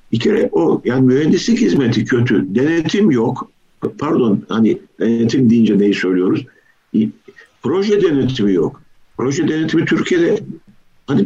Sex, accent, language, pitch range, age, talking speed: male, native, Turkish, 115-165 Hz, 60-79, 115 wpm